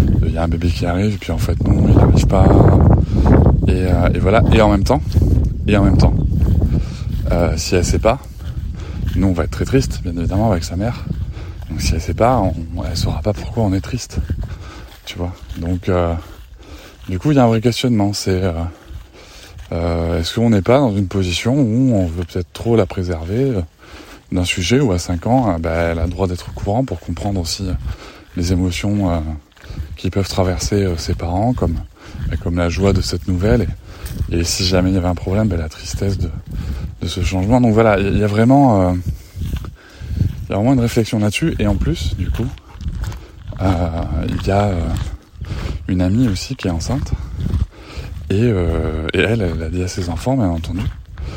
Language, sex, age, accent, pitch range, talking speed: French, male, 20-39, French, 85-105 Hz, 215 wpm